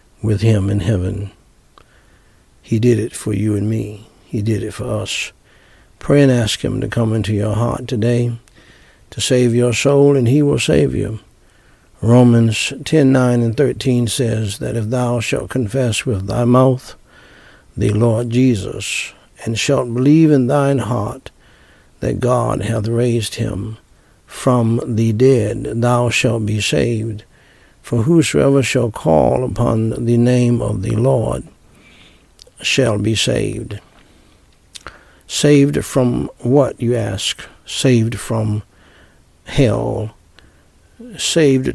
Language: English